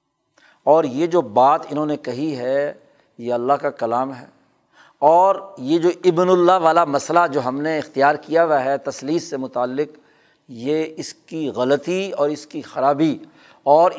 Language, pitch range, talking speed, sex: Urdu, 135-180 Hz, 165 wpm, male